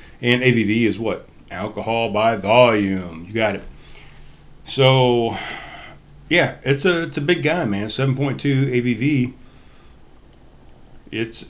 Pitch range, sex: 100-125 Hz, male